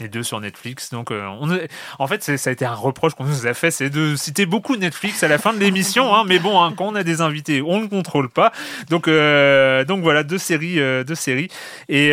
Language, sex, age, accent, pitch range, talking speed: French, male, 30-49, French, 120-155 Hz, 260 wpm